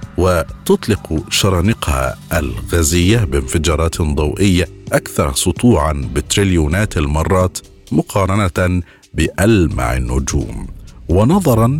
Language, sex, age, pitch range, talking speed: Arabic, male, 50-69, 80-110 Hz, 65 wpm